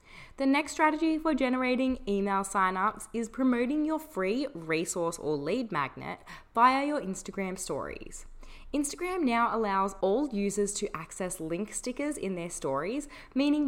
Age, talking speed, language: 20-39, 140 wpm, English